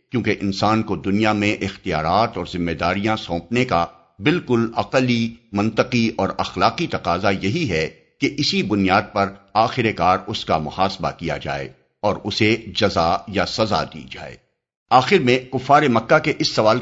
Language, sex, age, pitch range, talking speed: Urdu, male, 50-69, 95-125 Hz, 155 wpm